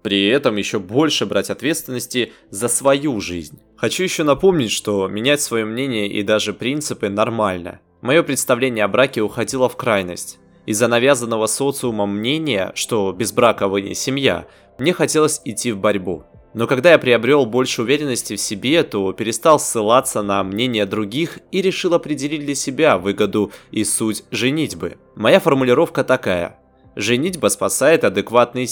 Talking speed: 150 wpm